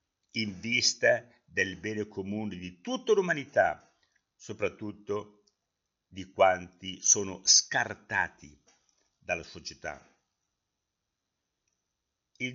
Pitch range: 100-155 Hz